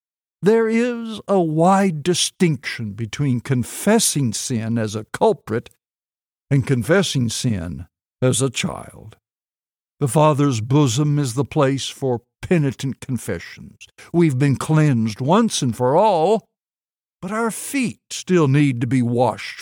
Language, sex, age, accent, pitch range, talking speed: English, male, 60-79, American, 125-185 Hz, 125 wpm